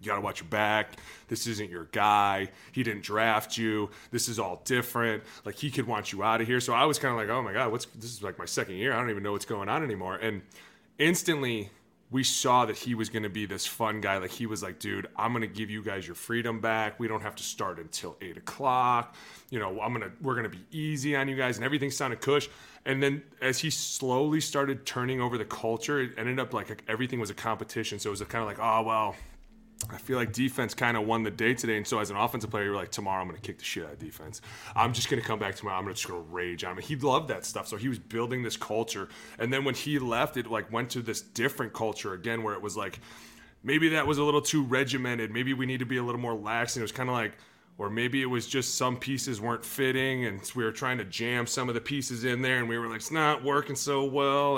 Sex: male